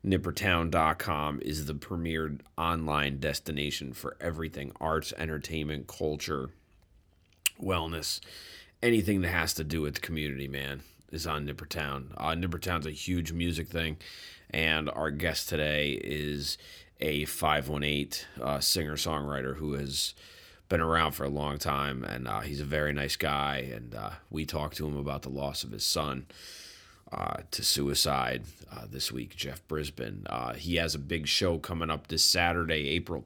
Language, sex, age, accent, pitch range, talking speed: English, male, 30-49, American, 70-85 Hz, 155 wpm